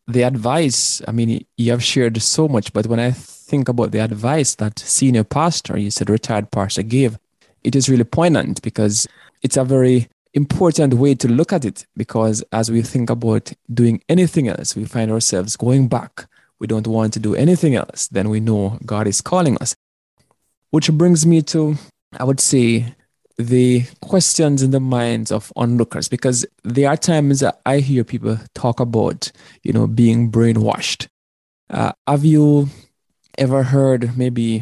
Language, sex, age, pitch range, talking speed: English, male, 20-39, 110-135 Hz, 170 wpm